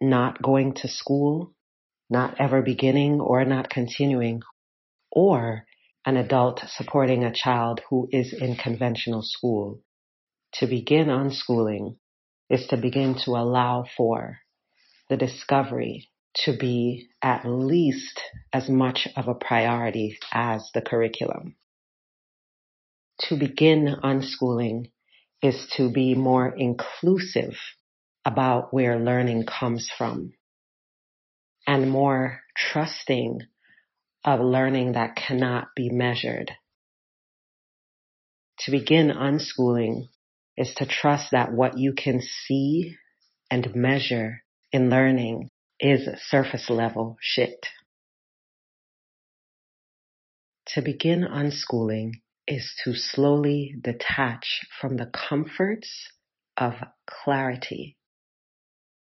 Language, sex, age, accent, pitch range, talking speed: English, female, 40-59, American, 120-135 Hz, 95 wpm